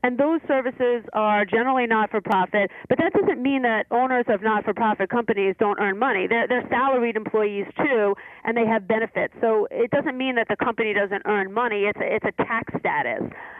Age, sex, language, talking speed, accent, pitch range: 40-59, female, English, 210 wpm, American, 205-255 Hz